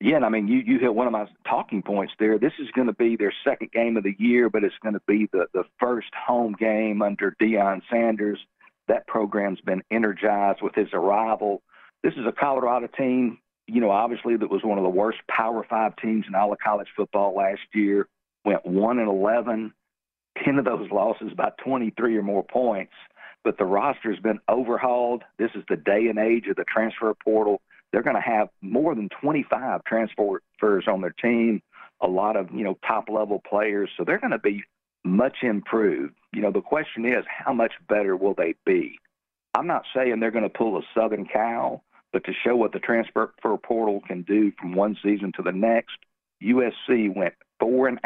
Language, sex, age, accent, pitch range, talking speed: English, male, 50-69, American, 100-115 Hz, 200 wpm